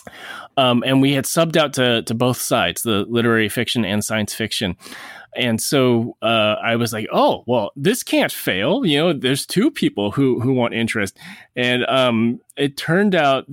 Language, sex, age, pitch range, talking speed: English, male, 20-39, 110-135 Hz, 180 wpm